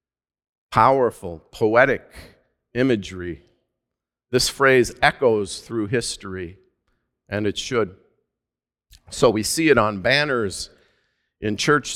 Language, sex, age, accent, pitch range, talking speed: English, male, 50-69, American, 125-165 Hz, 95 wpm